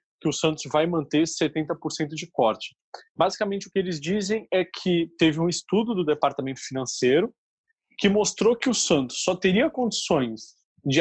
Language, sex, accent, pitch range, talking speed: Portuguese, male, Brazilian, 145-205 Hz, 165 wpm